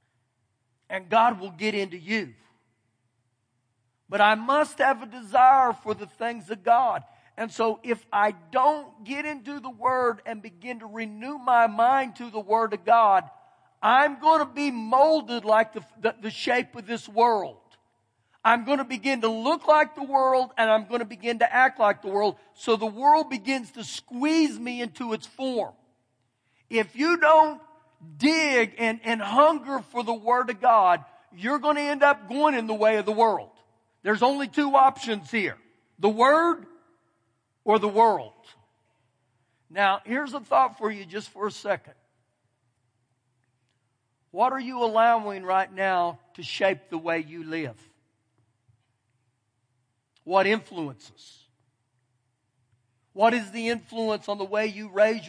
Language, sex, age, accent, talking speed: English, male, 50-69, American, 160 wpm